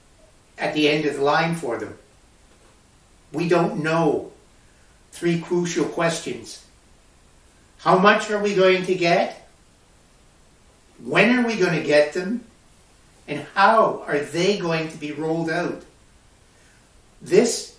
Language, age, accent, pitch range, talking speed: English, 60-79, American, 145-175 Hz, 130 wpm